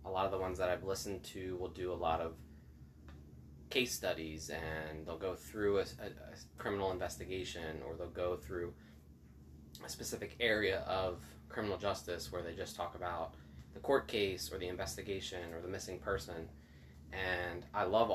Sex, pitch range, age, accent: male, 75-95 Hz, 20-39, American